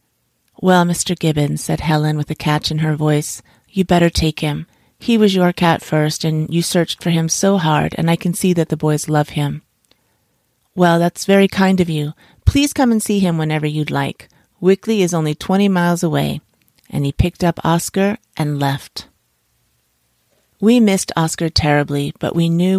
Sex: female